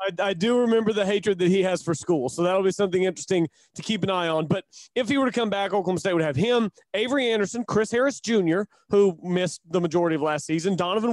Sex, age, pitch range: male, 30-49, 170-210 Hz